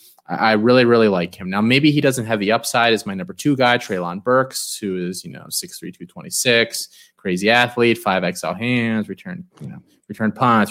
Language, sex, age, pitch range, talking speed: English, male, 20-39, 95-120 Hz, 195 wpm